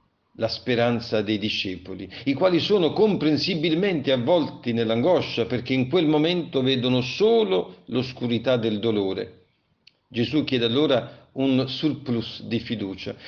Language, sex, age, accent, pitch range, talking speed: Italian, male, 50-69, native, 115-155 Hz, 120 wpm